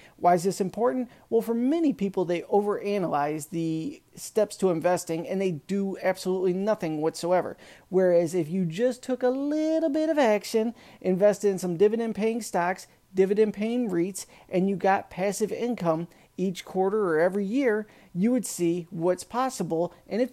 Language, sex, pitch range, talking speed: English, male, 170-220 Hz, 165 wpm